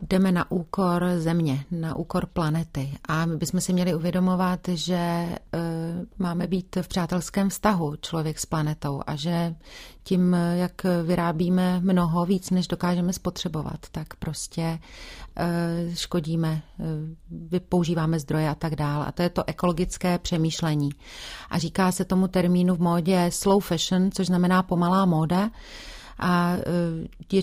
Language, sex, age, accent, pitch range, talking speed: Czech, female, 40-59, native, 165-185 Hz, 135 wpm